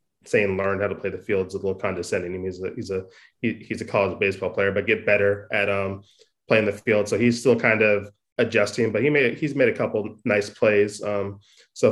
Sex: male